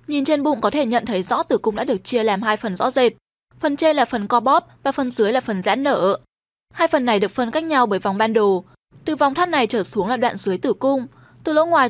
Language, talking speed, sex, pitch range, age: Vietnamese, 280 wpm, female, 205-280 Hz, 10-29